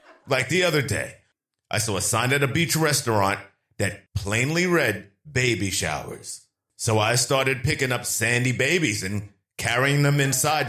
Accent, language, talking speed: American, English, 155 wpm